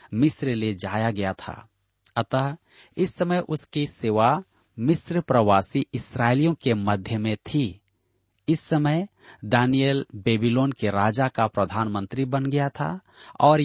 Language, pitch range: Hindi, 105-145 Hz